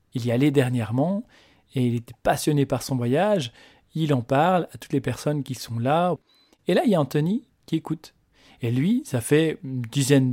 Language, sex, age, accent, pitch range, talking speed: French, male, 40-59, French, 125-165 Hz, 205 wpm